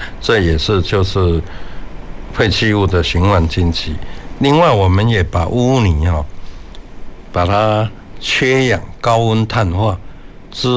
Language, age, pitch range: Chinese, 60-79, 90-110 Hz